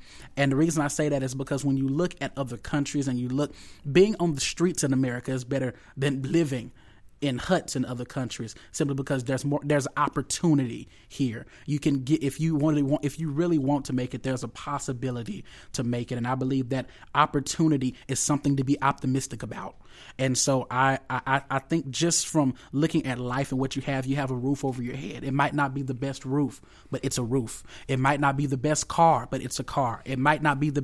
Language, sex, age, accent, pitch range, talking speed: English, male, 20-39, American, 130-145 Hz, 230 wpm